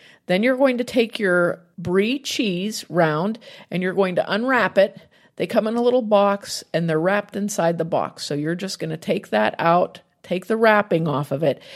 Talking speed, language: 210 wpm, English